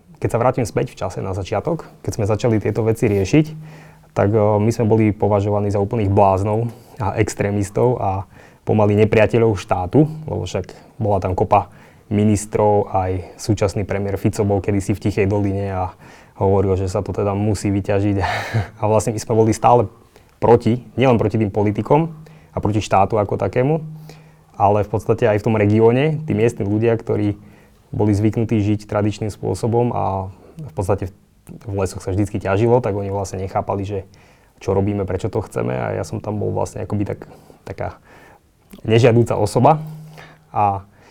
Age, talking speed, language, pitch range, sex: 20-39, 165 wpm, Slovak, 100-115 Hz, male